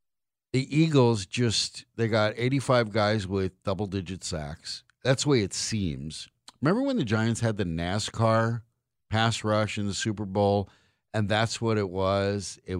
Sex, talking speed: male, 160 wpm